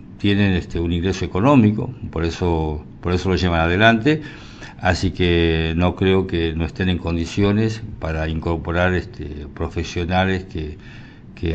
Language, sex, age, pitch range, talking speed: Spanish, male, 60-79, 80-105 Hz, 125 wpm